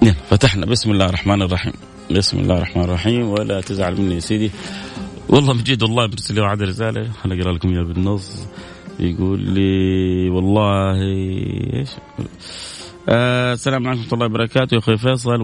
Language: Arabic